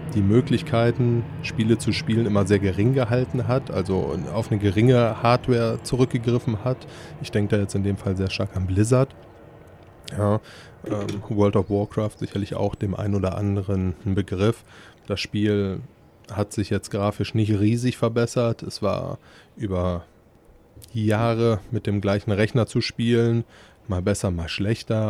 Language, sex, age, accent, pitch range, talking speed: German, male, 20-39, German, 100-115 Hz, 145 wpm